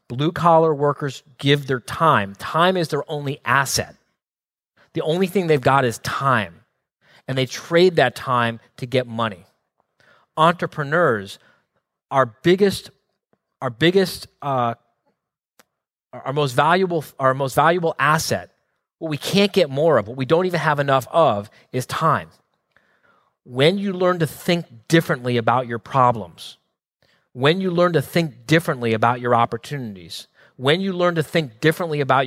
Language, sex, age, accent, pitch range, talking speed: English, male, 30-49, American, 125-165 Hz, 145 wpm